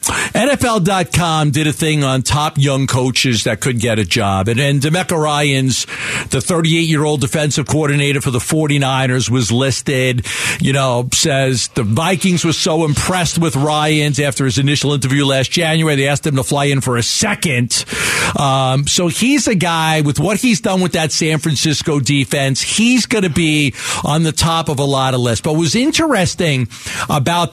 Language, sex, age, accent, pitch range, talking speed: English, male, 50-69, American, 135-180 Hz, 175 wpm